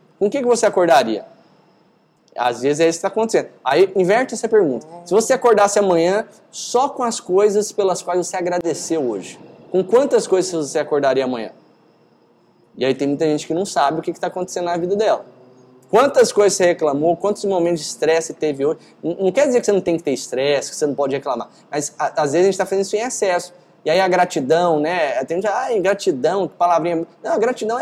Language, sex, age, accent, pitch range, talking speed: Portuguese, male, 20-39, Brazilian, 165-220 Hz, 210 wpm